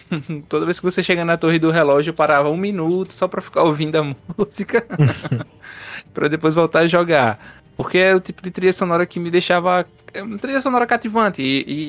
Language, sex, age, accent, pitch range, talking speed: Portuguese, male, 20-39, Brazilian, 130-175 Hz, 205 wpm